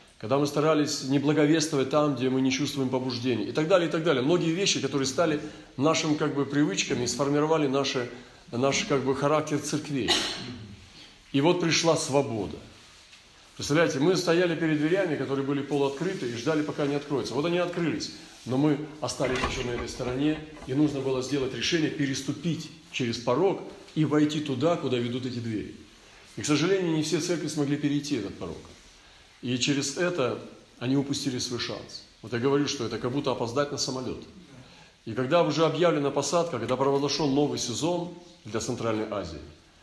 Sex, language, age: male, Russian, 40-59